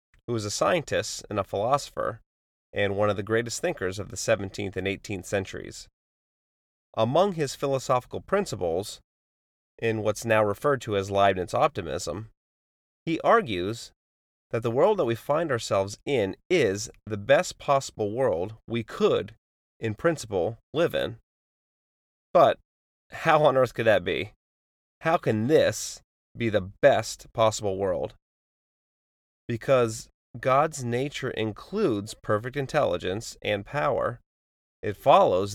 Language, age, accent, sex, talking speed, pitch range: English, 30-49, American, male, 130 wpm, 90-125 Hz